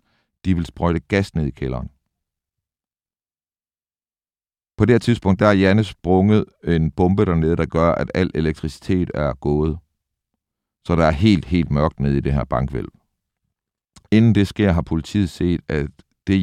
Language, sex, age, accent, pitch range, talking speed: Danish, male, 60-79, native, 75-95 Hz, 160 wpm